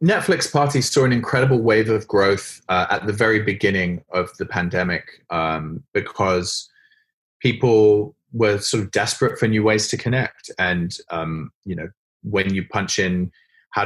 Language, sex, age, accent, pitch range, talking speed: English, male, 20-39, British, 90-125 Hz, 160 wpm